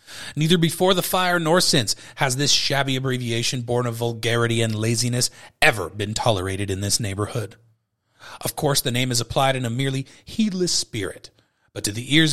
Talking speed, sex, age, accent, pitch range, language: 175 wpm, male, 30-49, American, 115-160 Hz, English